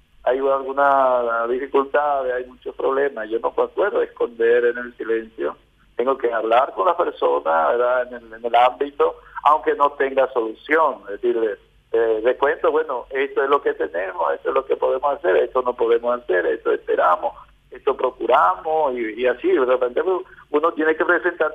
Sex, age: male, 50-69